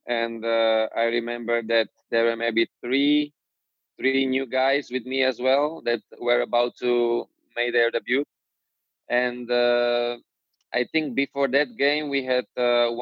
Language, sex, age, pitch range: English, male, 20-39, 115-130 Hz